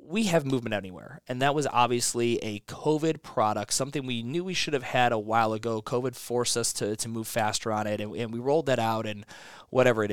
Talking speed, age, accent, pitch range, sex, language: 230 wpm, 20-39, American, 110-125 Hz, male, English